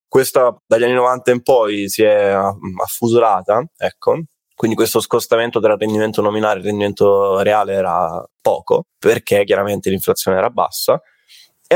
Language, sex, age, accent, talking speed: Italian, male, 20-39, native, 145 wpm